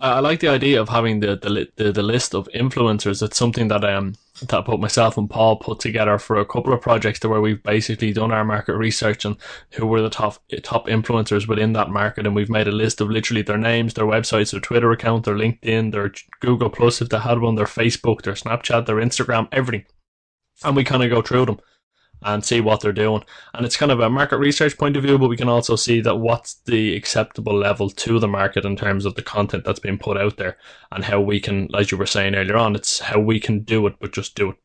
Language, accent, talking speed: English, Irish, 250 wpm